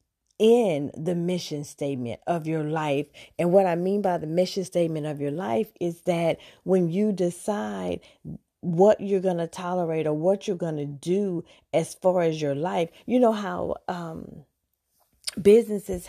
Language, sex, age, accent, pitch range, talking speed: English, female, 40-59, American, 160-195 Hz, 165 wpm